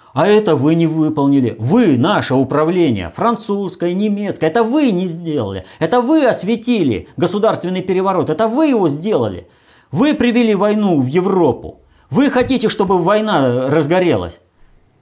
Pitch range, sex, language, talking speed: 125-195 Hz, male, Russian, 130 wpm